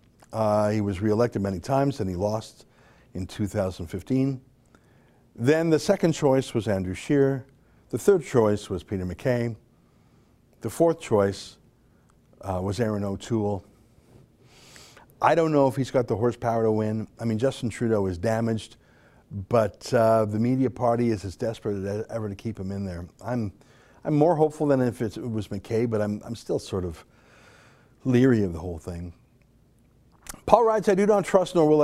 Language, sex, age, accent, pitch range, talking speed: English, male, 50-69, American, 105-130 Hz, 170 wpm